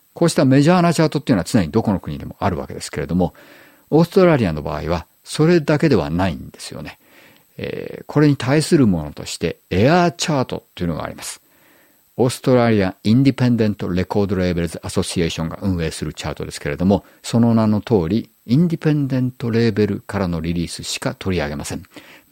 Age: 50-69